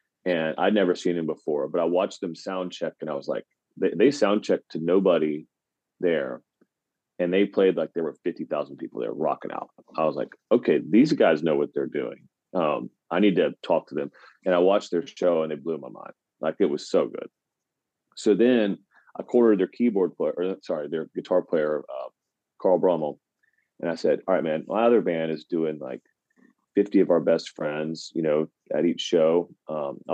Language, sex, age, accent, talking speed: English, male, 30-49, American, 205 wpm